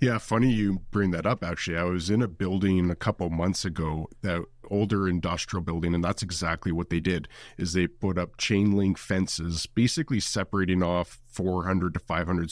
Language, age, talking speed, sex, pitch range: English, 30-49, 180 wpm, male, 90-110 Hz